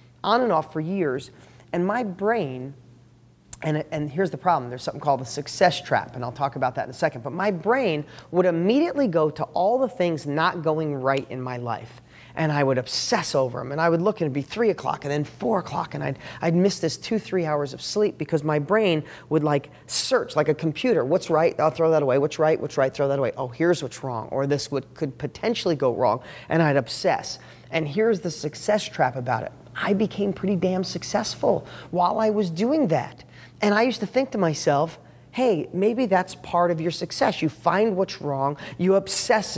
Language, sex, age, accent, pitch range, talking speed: English, male, 40-59, American, 140-200 Hz, 220 wpm